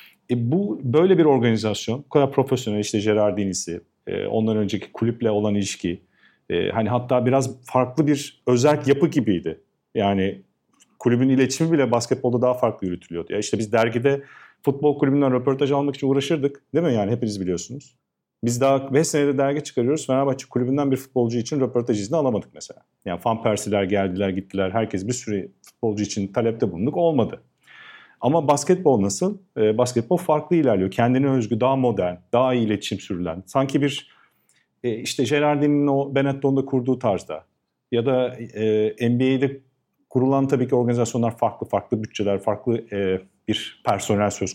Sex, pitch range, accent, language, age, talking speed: male, 105-135 Hz, native, Turkish, 40-59, 155 wpm